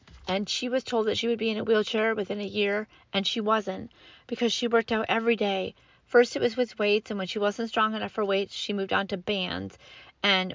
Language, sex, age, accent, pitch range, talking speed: English, female, 30-49, American, 190-235 Hz, 240 wpm